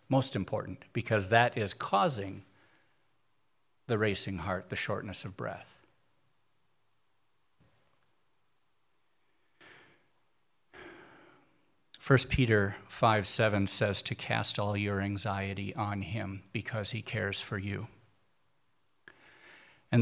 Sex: male